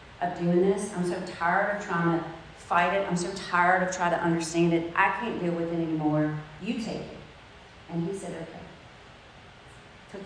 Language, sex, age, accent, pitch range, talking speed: English, female, 40-59, American, 165-205 Hz, 195 wpm